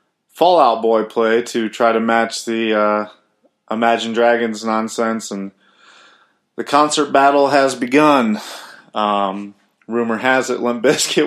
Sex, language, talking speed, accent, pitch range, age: male, English, 130 wpm, American, 115-140 Hz, 20-39